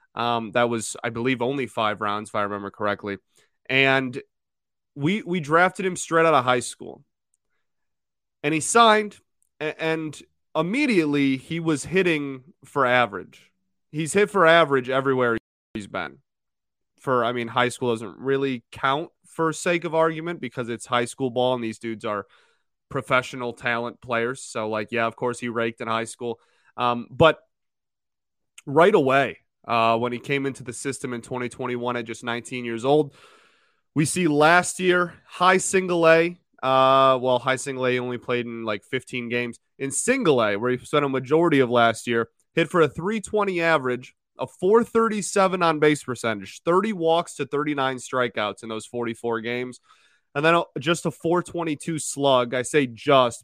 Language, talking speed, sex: English, 165 wpm, male